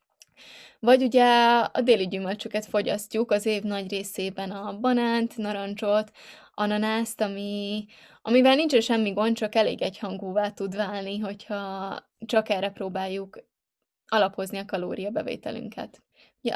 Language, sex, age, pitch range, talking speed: Hungarian, female, 20-39, 200-225 Hz, 120 wpm